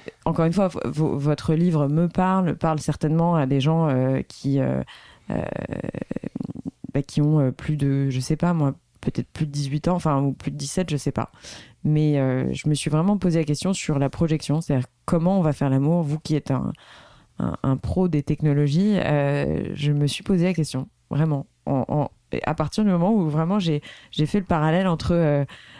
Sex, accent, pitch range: female, French, 140-170 Hz